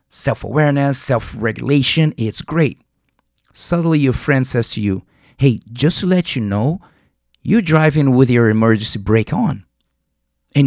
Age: 30-49